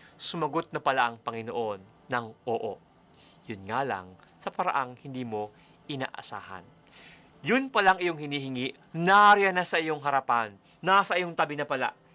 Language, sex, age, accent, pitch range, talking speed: Filipino, male, 30-49, native, 120-165 Hz, 150 wpm